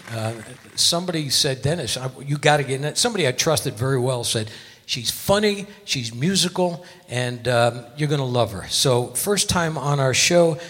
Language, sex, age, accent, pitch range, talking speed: English, male, 60-79, American, 125-165 Hz, 185 wpm